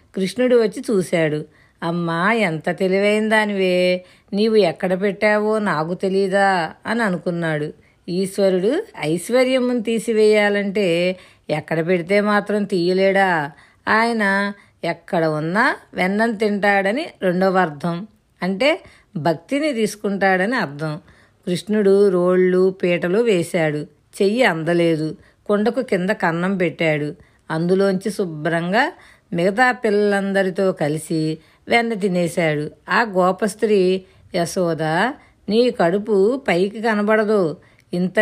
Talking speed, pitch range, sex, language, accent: 90 wpm, 170-215 Hz, female, Telugu, native